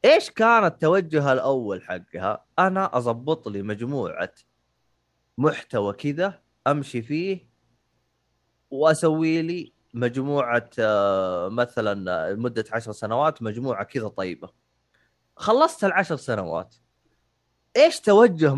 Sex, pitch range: male, 115-185 Hz